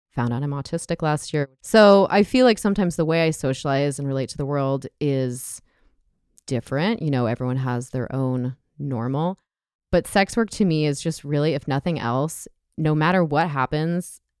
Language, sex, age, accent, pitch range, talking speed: English, female, 20-39, American, 125-165 Hz, 185 wpm